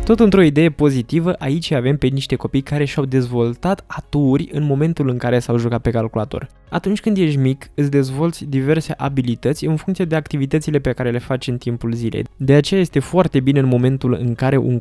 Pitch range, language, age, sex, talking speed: 125-160 Hz, Romanian, 20-39, male, 205 wpm